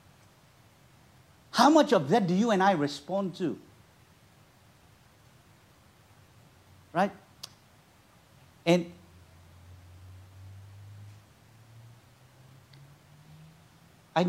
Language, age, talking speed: English, 60-79, 55 wpm